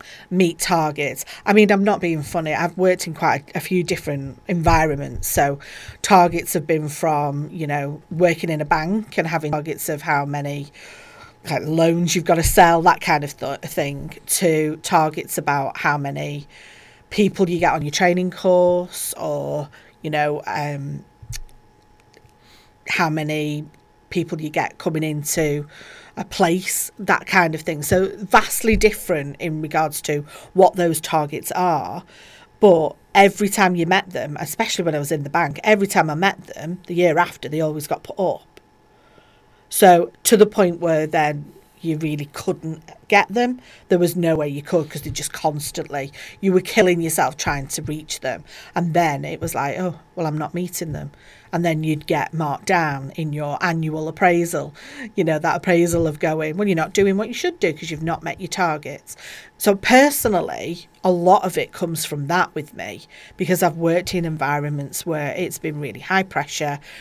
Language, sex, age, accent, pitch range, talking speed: English, female, 40-59, British, 150-185 Hz, 180 wpm